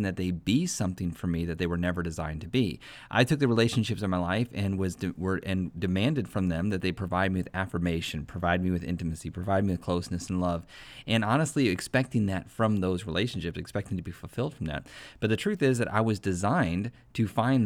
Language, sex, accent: English, male, American